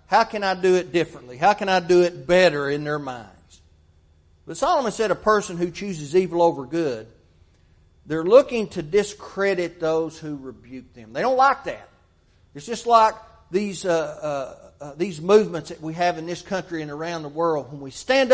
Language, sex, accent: English, male, American